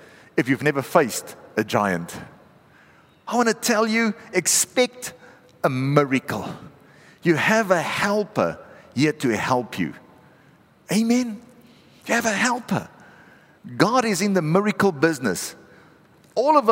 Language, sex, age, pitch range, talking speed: English, male, 50-69, 165-225 Hz, 125 wpm